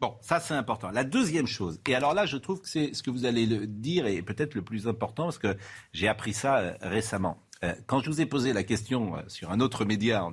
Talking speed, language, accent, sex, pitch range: 265 wpm, French, French, male, 95-150 Hz